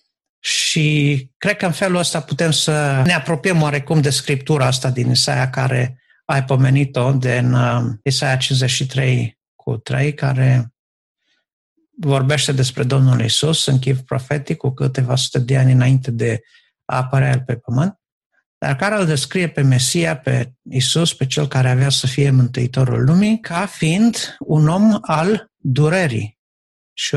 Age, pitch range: 50-69, 130-160 Hz